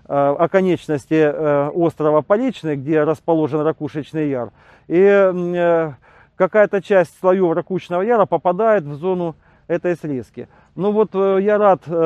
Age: 40-59